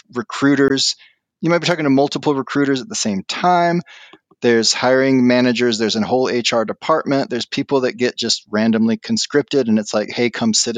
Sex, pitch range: male, 115-150 Hz